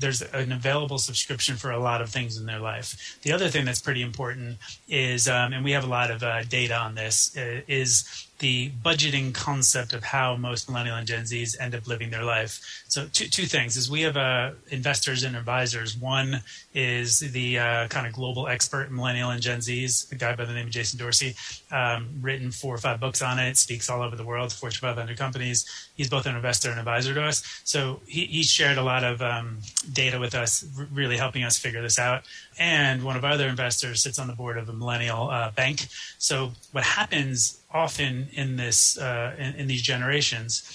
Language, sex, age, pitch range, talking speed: English, male, 30-49, 120-135 Hz, 215 wpm